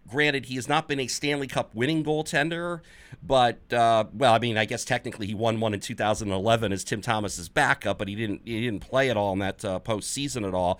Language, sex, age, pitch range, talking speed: English, male, 40-59, 110-140 Hz, 230 wpm